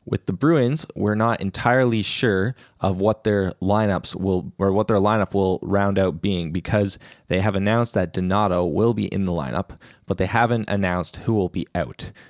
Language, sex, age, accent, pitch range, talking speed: English, male, 20-39, American, 95-110 Hz, 190 wpm